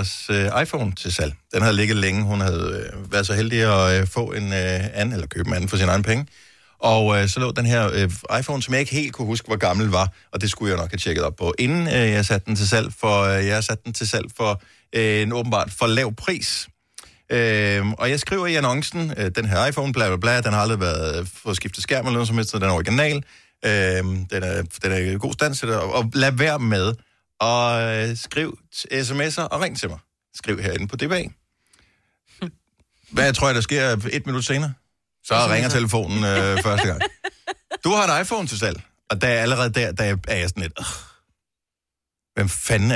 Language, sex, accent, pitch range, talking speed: Danish, male, native, 95-120 Hz, 205 wpm